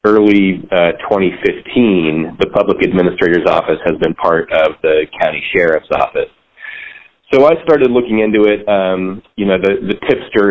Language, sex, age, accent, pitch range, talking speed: English, male, 30-49, American, 85-110 Hz, 155 wpm